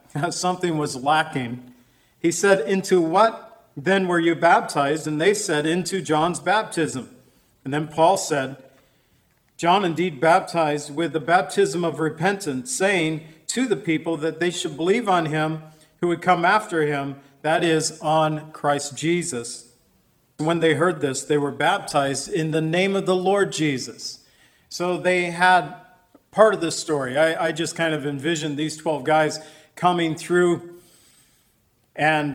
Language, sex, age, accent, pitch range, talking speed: English, male, 50-69, American, 150-175 Hz, 150 wpm